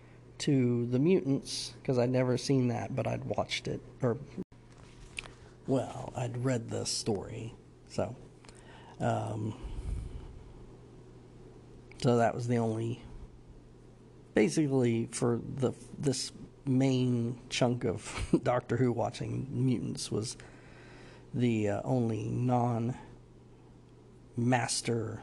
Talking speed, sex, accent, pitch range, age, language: 100 wpm, male, American, 115-135 Hz, 50-69, English